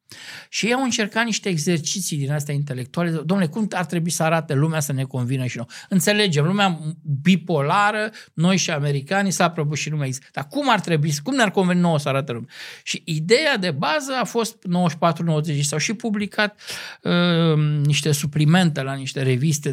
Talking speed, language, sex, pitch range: 175 wpm, Romanian, male, 140-175 Hz